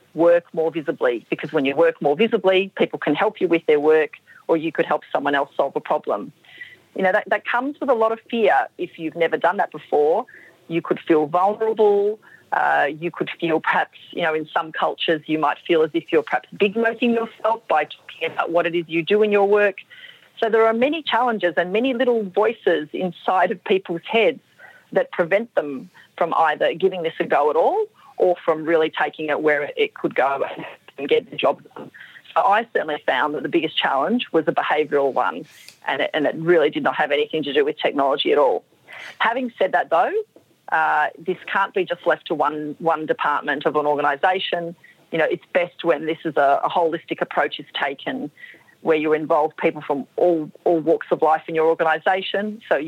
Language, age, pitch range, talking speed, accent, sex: English, 40-59, 160-230 Hz, 210 wpm, Australian, female